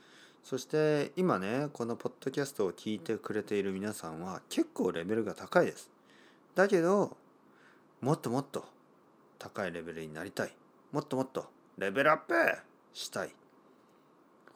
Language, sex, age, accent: Japanese, male, 40-59, native